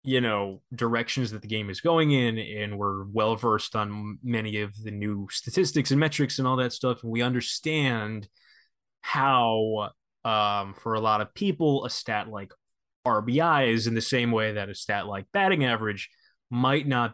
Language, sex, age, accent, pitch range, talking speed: English, male, 20-39, American, 105-135 Hz, 180 wpm